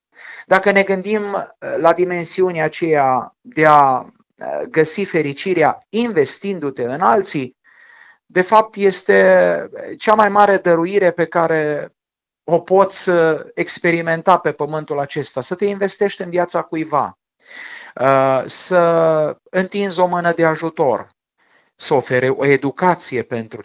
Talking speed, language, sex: 115 wpm, Romanian, male